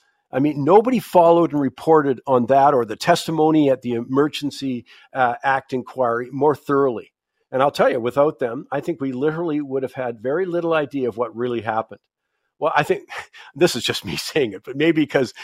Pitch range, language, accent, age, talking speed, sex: 120-150 Hz, English, American, 50-69, 200 wpm, male